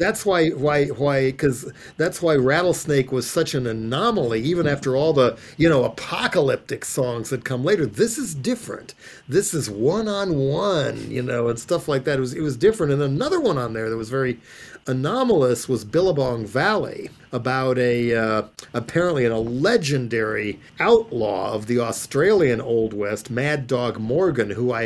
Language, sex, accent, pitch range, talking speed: English, male, American, 115-150 Hz, 170 wpm